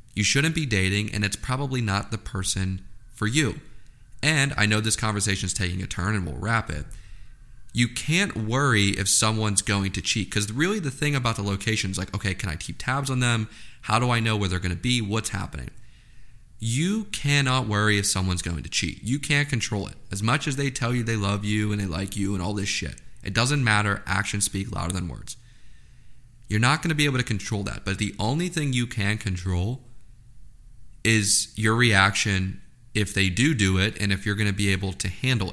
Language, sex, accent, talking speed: English, male, American, 220 wpm